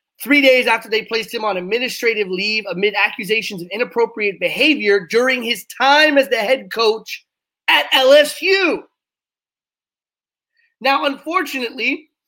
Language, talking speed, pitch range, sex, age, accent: English, 120 wpm, 200-265 Hz, male, 30-49, American